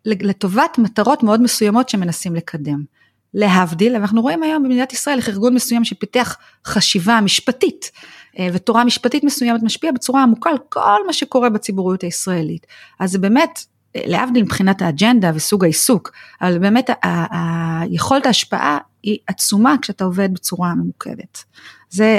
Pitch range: 175-230 Hz